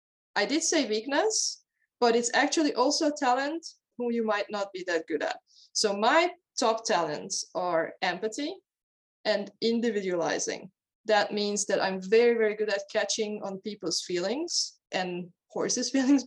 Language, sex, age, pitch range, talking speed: English, female, 20-39, 190-235 Hz, 150 wpm